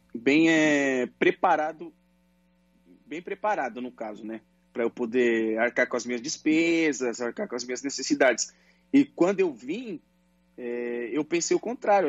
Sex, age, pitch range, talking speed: male, 20-39, 125-180 Hz, 150 wpm